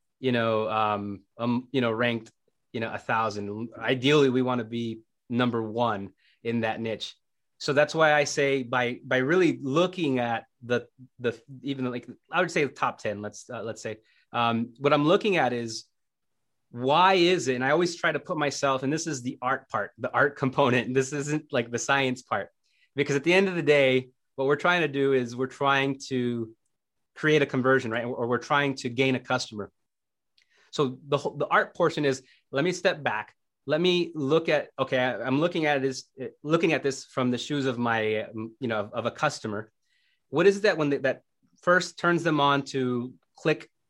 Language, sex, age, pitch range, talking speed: English, male, 30-49, 120-145 Hz, 205 wpm